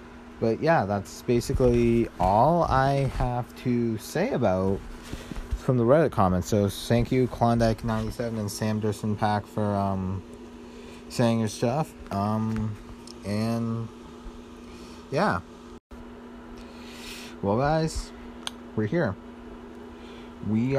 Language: English